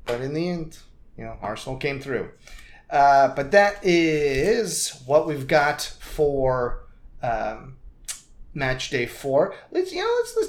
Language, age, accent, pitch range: English, 30-49, American, 120-185 Hz